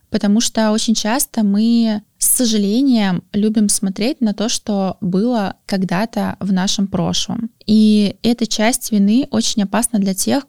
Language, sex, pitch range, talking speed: Russian, female, 195-225 Hz, 145 wpm